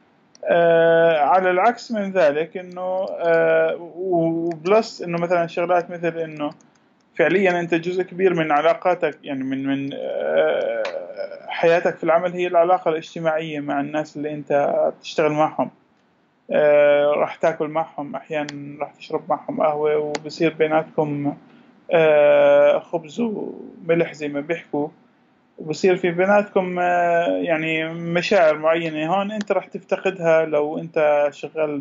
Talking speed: 125 wpm